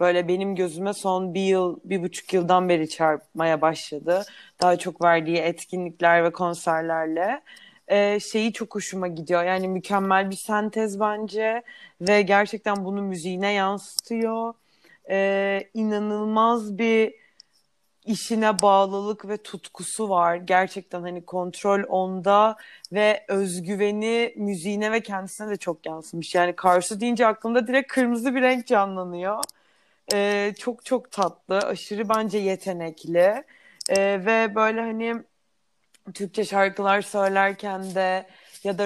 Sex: female